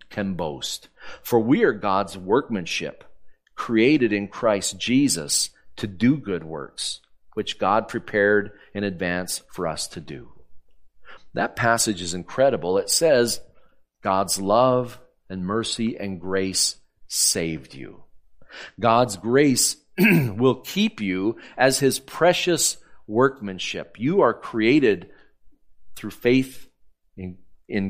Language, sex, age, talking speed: English, male, 40-59, 115 wpm